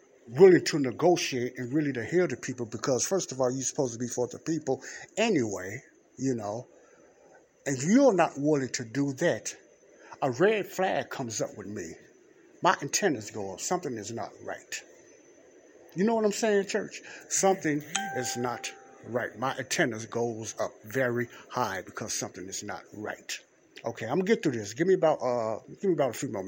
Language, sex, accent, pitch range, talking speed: English, male, American, 125-190 Hz, 185 wpm